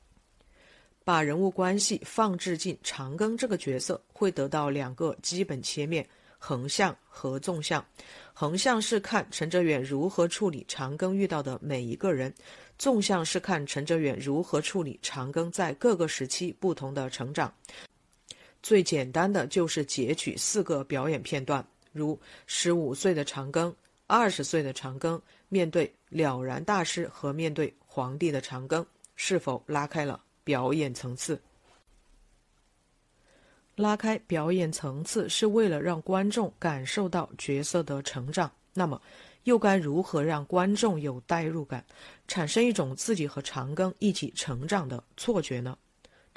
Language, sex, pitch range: Chinese, female, 140-185 Hz